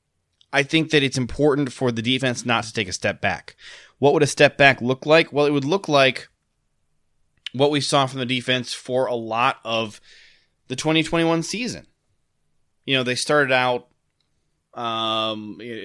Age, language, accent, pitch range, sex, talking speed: 20-39, English, American, 110-140 Hz, male, 175 wpm